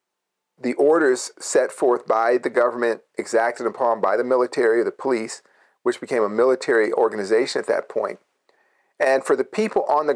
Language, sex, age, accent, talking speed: English, male, 40-59, American, 170 wpm